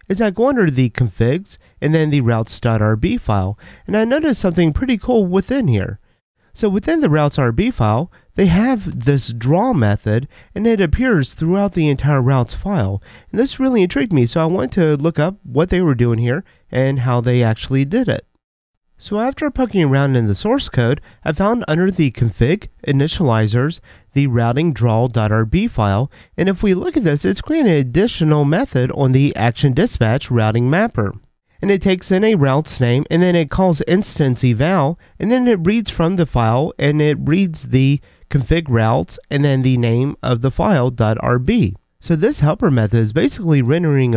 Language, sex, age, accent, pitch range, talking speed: English, male, 30-49, American, 120-170 Hz, 180 wpm